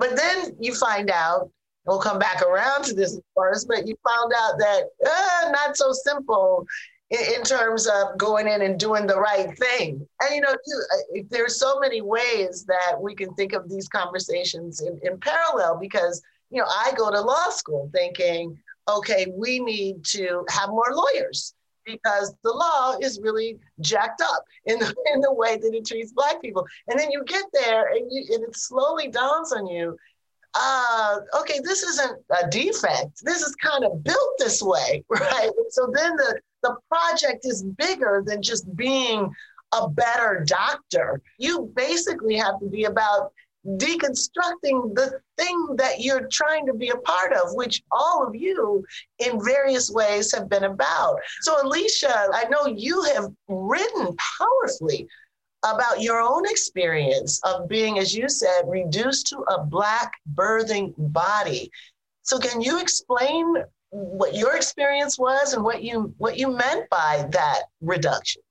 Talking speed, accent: 165 wpm, American